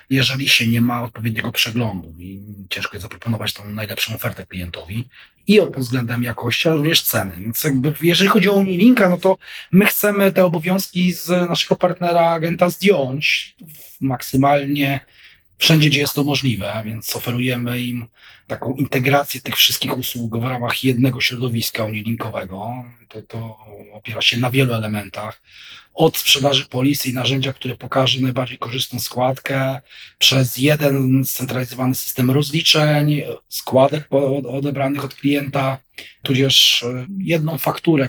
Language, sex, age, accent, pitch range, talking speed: Polish, male, 40-59, native, 120-145 Hz, 130 wpm